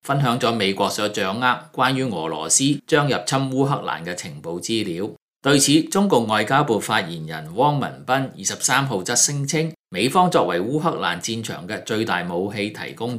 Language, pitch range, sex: Chinese, 100-145 Hz, male